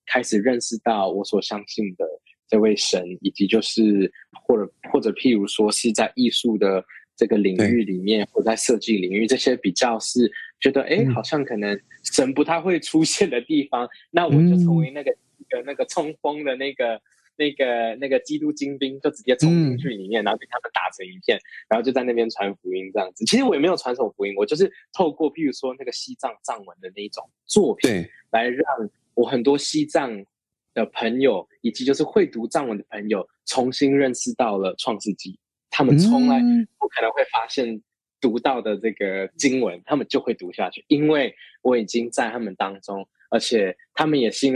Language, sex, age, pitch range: Chinese, male, 20-39, 105-150 Hz